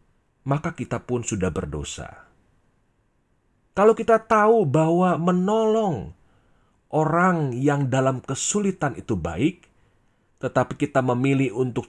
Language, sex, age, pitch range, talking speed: Indonesian, male, 30-49, 115-145 Hz, 100 wpm